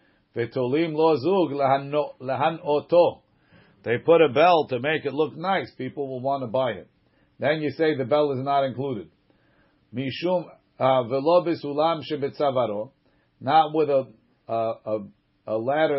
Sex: male